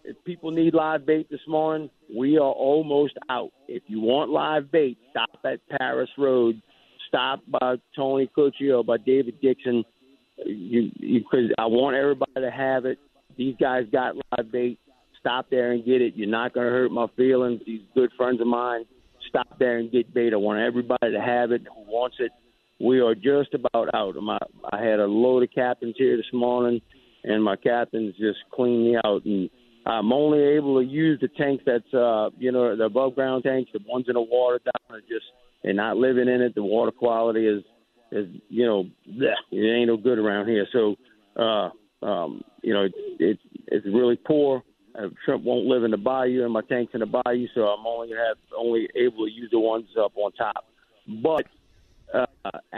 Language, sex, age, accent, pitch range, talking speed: English, male, 50-69, American, 115-135 Hz, 195 wpm